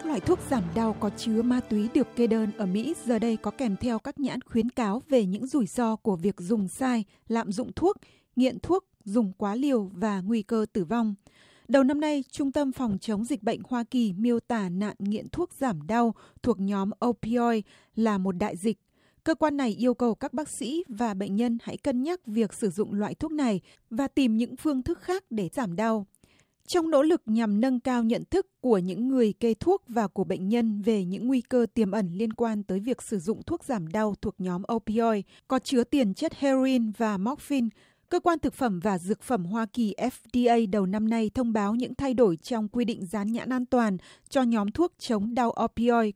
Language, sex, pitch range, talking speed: Vietnamese, female, 210-255 Hz, 220 wpm